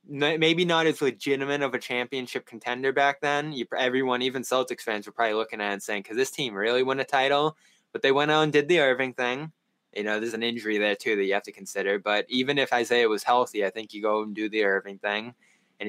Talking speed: 245 wpm